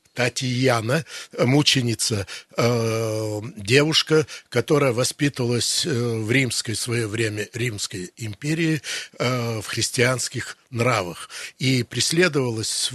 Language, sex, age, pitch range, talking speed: Russian, male, 60-79, 115-145 Hz, 75 wpm